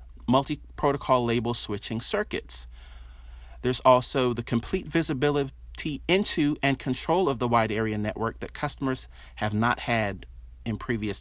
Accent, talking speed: American, 130 wpm